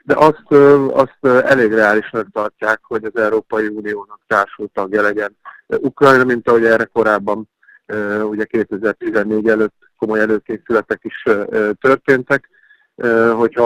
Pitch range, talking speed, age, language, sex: 110-125 Hz, 110 wpm, 50-69, Hungarian, male